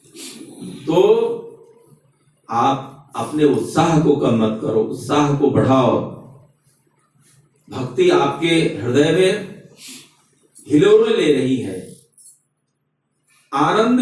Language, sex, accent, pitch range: Hindi, male, native, 140-215 Hz